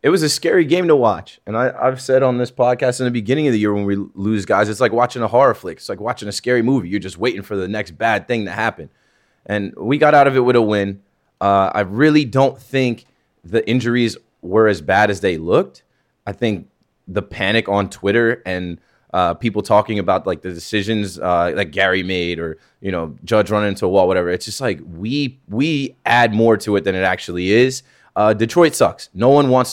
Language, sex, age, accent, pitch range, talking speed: English, male, 20-39, American, 95-125 Hz, 230 wpm